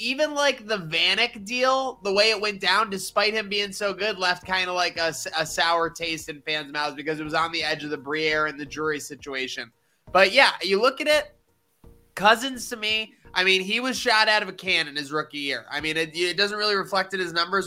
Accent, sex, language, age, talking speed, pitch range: American, male, English, 20-39, 240 wpm, 170-225 Hz